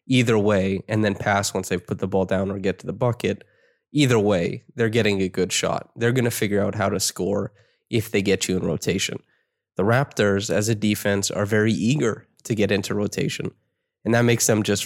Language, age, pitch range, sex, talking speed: English, 20-39, 105-120 Hz, male, 220 wpm